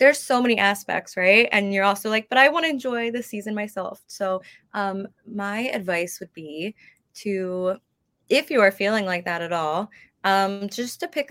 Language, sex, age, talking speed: English, female, 20-39, 190 wpm